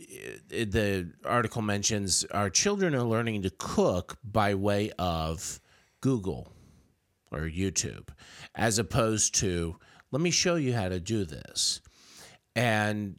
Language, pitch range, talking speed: English, 90-110 Hz, 125 wpm